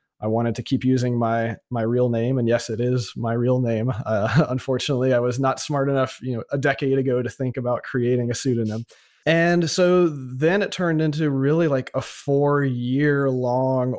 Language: English